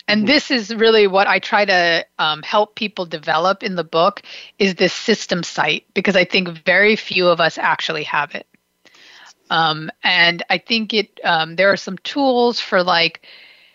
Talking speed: 180 wpm